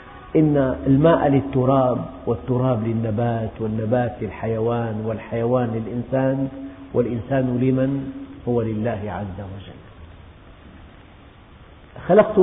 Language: Arabic